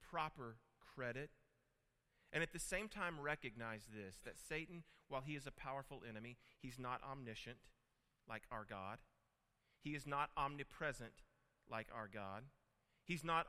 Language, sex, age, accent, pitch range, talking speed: Czech, male, 40-59, American, 110-150 Hz, 140 wpm